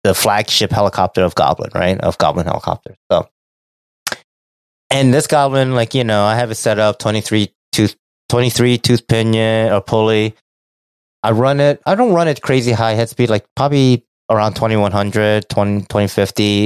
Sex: male